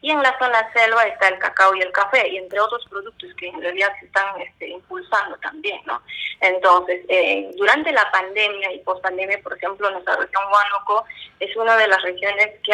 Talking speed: 200 wpm